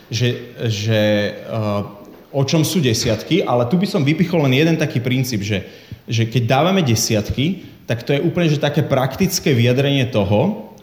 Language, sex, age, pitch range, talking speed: Slovak, male, 30-49, 115-140 Hz, 160 wpm